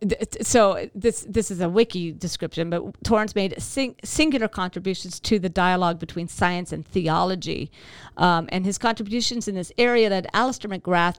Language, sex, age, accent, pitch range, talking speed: English, female, 50-69, American, 170-215 Hz, 160 wpm